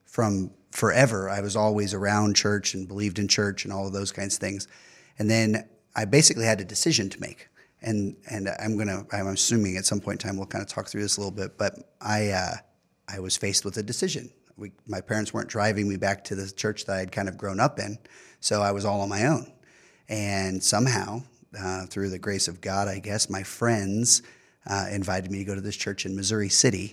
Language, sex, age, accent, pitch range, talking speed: English, male, 30-49, American, 95-110 Hz, 230 wpm